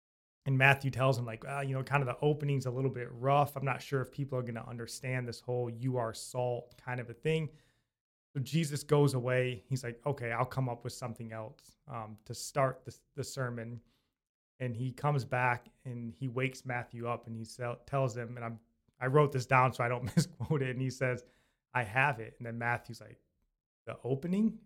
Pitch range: 120-135 Hz